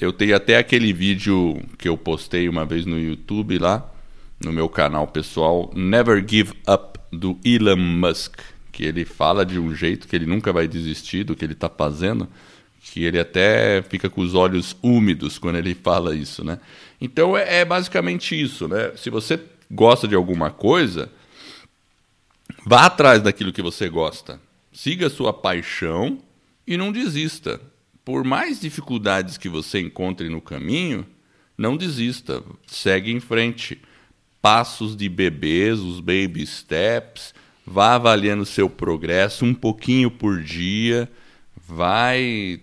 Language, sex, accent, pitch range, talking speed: Portuguese, male, Brazilian, 85-120 Hz, 150 wpm